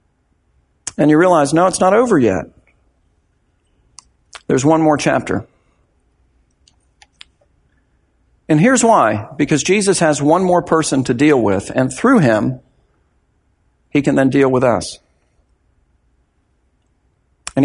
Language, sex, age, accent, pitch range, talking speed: English, male, 50-69, American, 120-170 Hz, 115 wpm